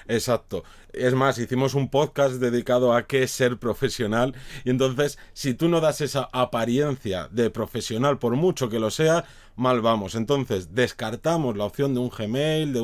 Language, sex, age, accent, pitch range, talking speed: Spanish, male, 30-49, Spanish, 120-150 Hz, 170 wpm